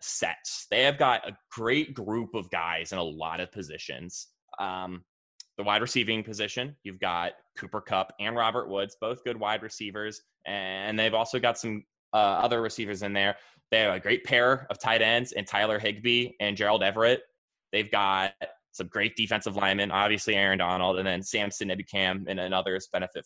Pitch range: 100-125 Hz